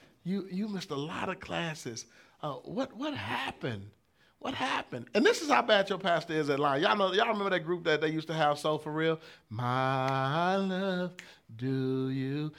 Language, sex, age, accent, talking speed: English, male, 30-49, American, 195 wpm